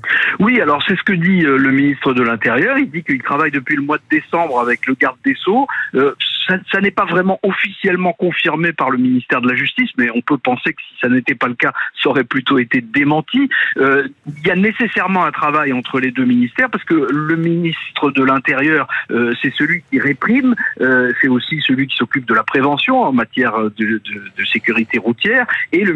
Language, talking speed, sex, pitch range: French, 215 wpm, male, 130-210 Hz